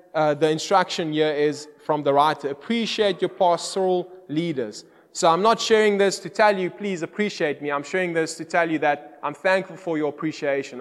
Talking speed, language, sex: 195 wpm, English, male